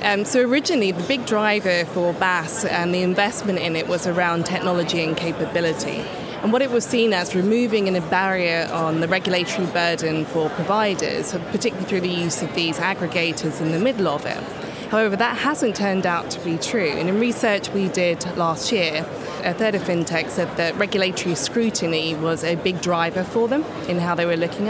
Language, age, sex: English, 20-39, female